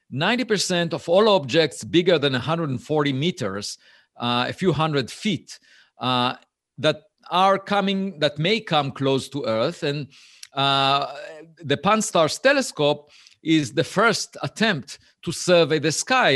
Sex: male